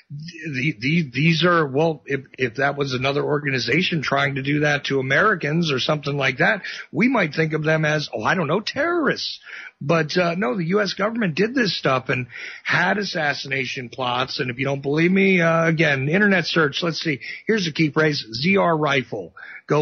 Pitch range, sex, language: 140-165 Hz, male, English